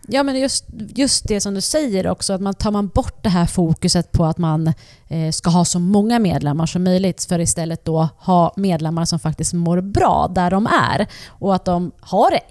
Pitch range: 155-195 Hz